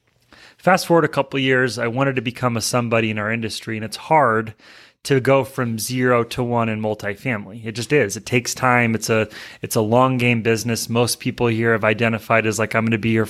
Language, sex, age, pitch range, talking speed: English, male, 30-49, 110-130 Hz, 230 wpm